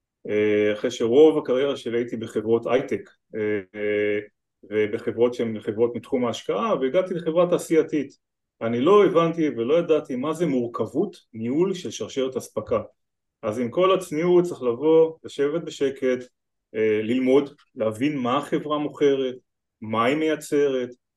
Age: 30-49